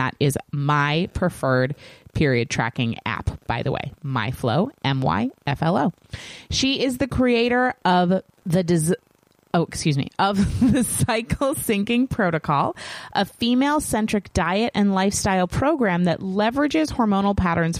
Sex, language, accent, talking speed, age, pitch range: female, English, American, 120 wpm, 30-49, 140-195 Hz